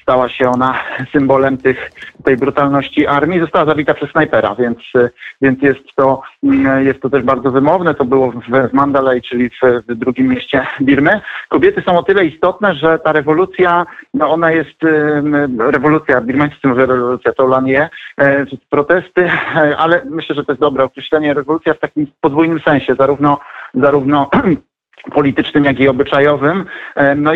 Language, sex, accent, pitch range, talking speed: Polish, male, native, 130-155 Hz, 155 wpm